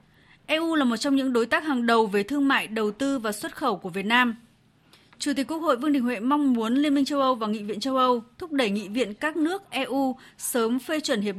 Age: 20-39